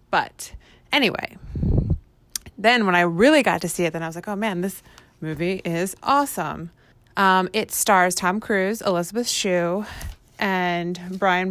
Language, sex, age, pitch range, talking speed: English, female, 20-39, 165-200 Hz, 150 wpm